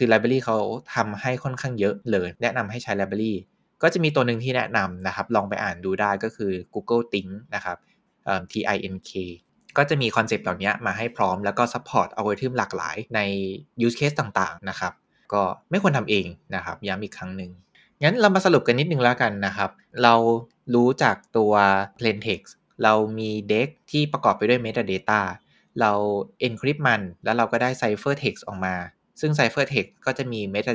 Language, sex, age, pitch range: Thai, male, 20-39, 100-130 Hz